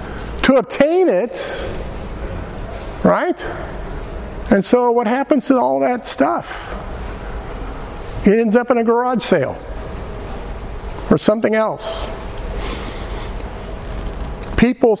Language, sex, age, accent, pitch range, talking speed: English, male, 50-69, American, 200-270 Hz, 90 wpm